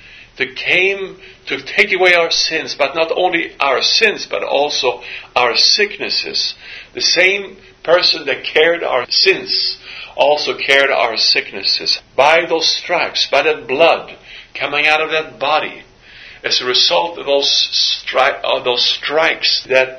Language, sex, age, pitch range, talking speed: English, male, 50-69, 140-185 Hz, 140 wpm